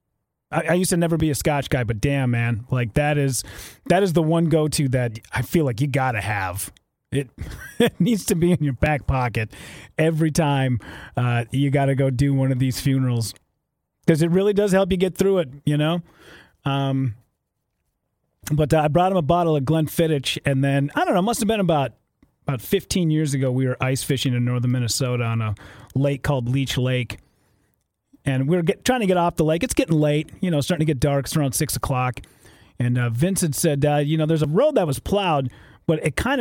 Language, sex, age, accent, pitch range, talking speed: English, male, 30-49, American, 130-185 Hz, 225 wpm